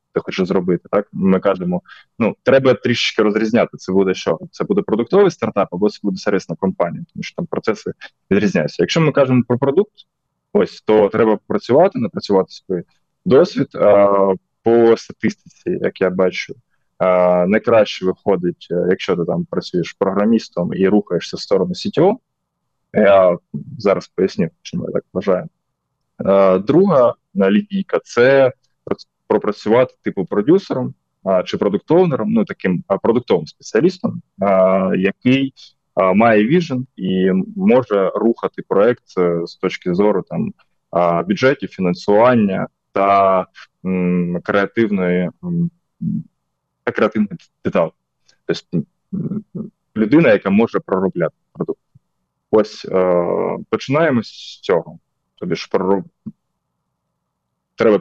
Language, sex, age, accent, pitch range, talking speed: Ukrainian, male, 20-39, native, 95-135 Hz, 120 wpm